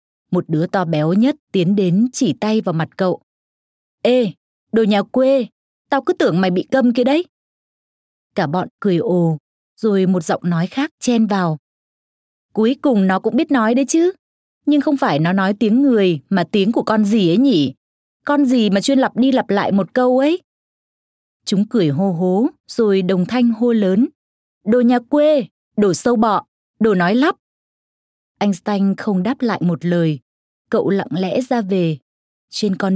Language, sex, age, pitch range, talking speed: Vietnamese, female, 20-39, 170-235 Hz, 180 wpm